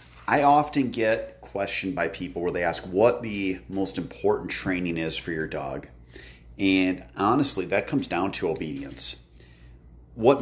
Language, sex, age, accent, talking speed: English, male, 40-59, American, 150 wpm